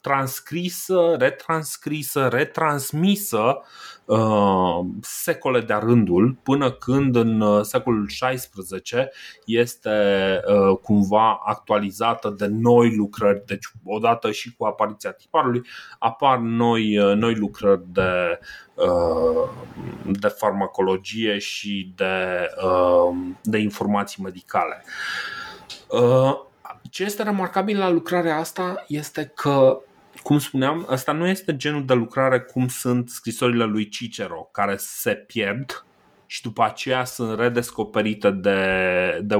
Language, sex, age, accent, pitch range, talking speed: Romanian, male, 30-49, native, 105-145 Hz, 110 wpm